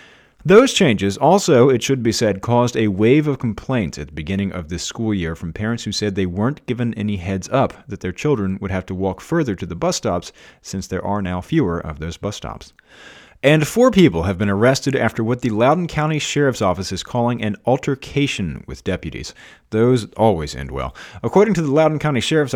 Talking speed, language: 210 wpm, English